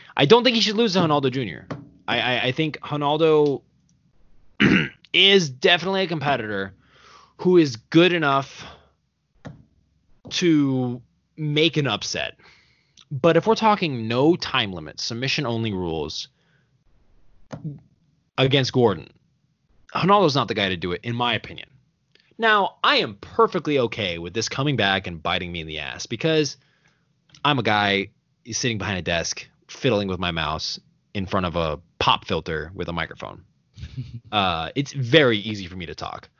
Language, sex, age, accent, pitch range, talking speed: English, male, 20-39, American, 95-150 Hz, 155 wpm